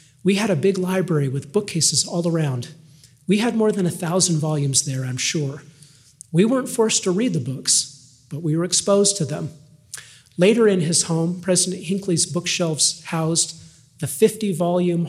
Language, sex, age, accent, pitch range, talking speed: English, male, 40-59, American, 140-180 Hz, 165 wpm